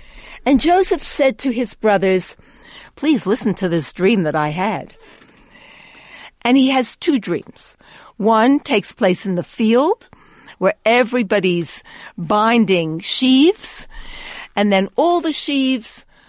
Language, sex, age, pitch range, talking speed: English, female, 60-79, 185-265 Hz, 125 wpm